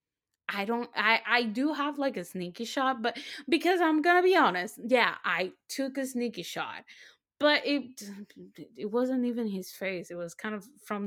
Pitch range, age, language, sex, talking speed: 205-275 Hz, 20-39, English, female, 185 wpm